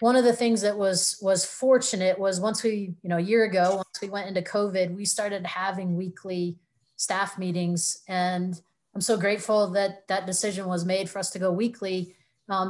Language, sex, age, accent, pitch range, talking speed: English, female, 30-49, American, 180-200 Hz, 200 wpm